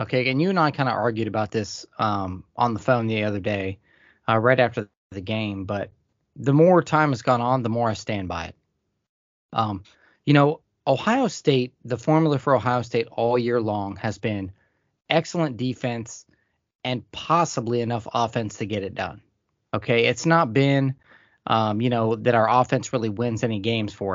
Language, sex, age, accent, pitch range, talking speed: English, male, 20-39, American, 110-135 Hz, 185 wpm